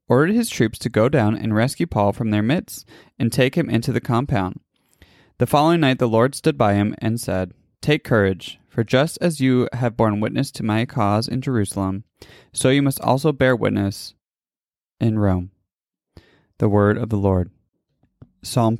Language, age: English, 20-39